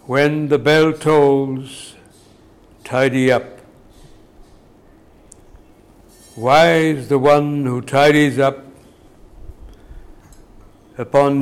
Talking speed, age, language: 70 wpm, 60-79, English